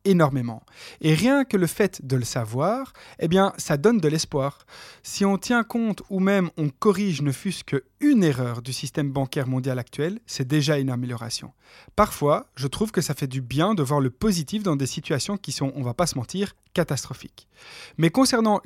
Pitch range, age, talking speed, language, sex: 135-190 Hz, 20-39, 200 wpm, French, male